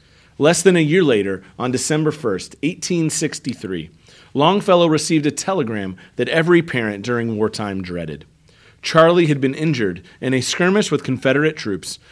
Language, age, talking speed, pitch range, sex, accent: English, 40-59, 145 wpm, 110-165 Hz, male, American